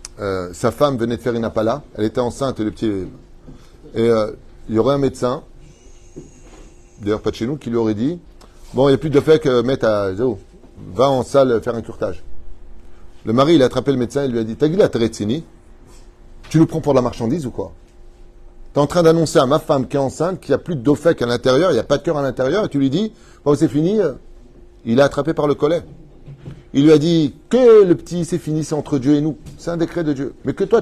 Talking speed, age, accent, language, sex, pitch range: 260 wpm, 30-49, French, French, male, 110-150 Hz